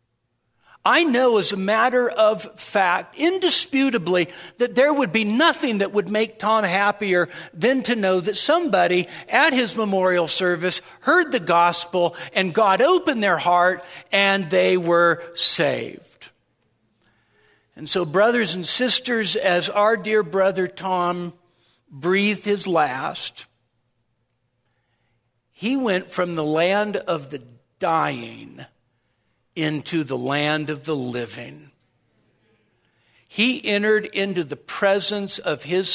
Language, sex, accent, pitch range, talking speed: English, male, American, 125-200 Hz, 120 wpm